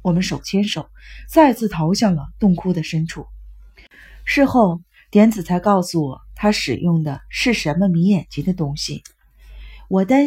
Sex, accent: female, native